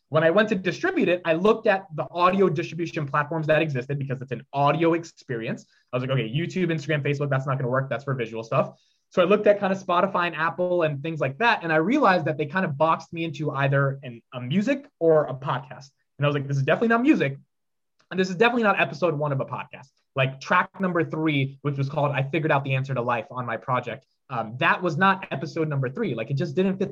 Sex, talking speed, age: male, 250 wpm, 20-39